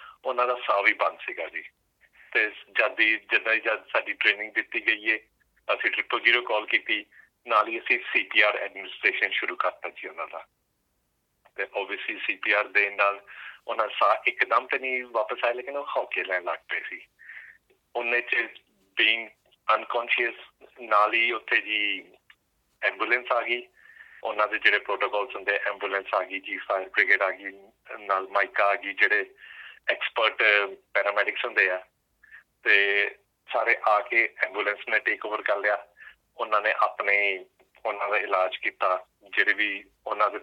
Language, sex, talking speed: Punjabi, male, 140 wpm